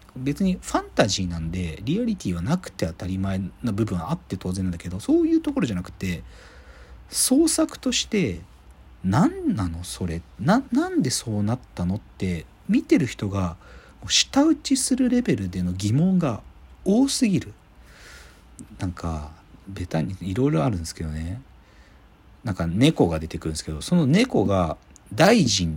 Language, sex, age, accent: Japanese, male, 40-59, native